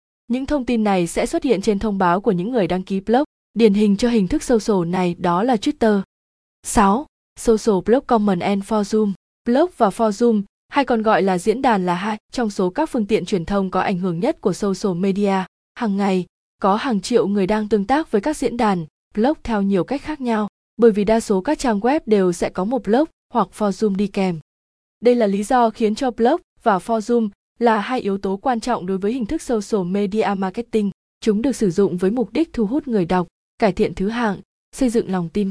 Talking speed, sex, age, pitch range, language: 240 wpm, female, 20-39, 190-235 Hz, Vietnamese